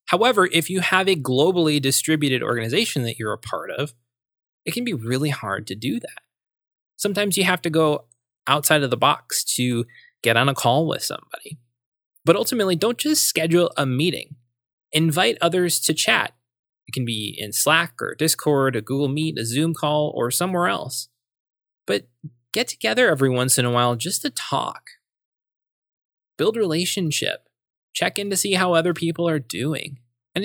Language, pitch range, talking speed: English, 125-175 Hz, 170 wpm